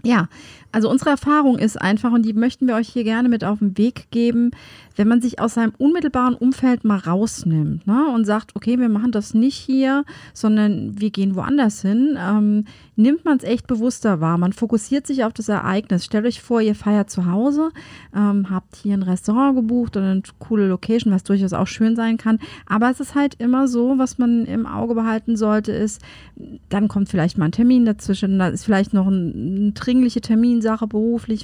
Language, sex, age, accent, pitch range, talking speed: German, female, 30-49, German, 195-235 Hz, 200 wpm